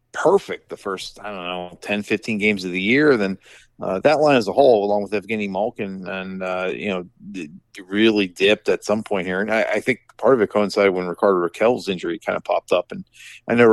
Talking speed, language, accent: 230 wpm, English, American